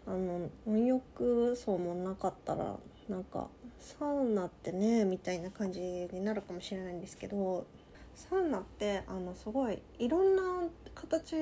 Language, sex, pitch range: Japanese, female, 185-255 Hz